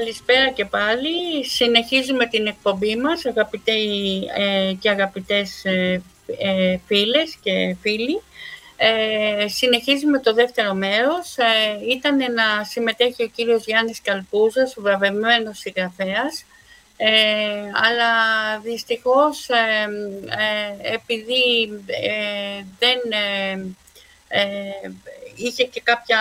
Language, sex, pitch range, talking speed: Greek, female, 205-245 Hz, 100 wpm